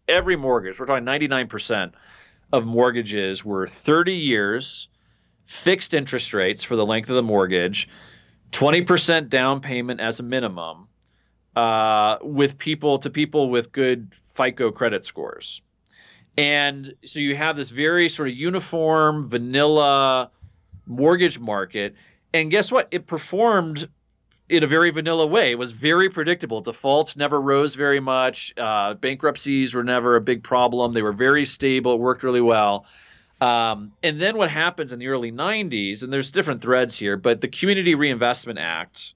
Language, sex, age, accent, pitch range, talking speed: English, male, 40-59, American, 115-150 Hz, 155 wpm